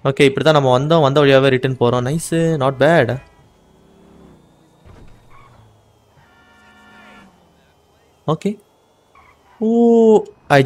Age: 20-39